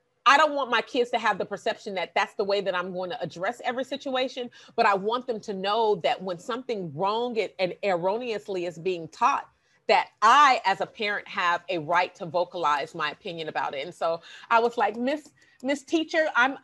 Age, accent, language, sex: 30-49, American, English, female